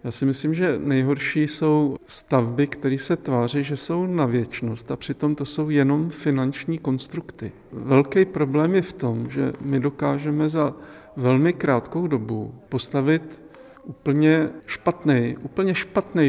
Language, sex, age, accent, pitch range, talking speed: Czech, male, 50-69, native, 130-150 Hz, 140 wpm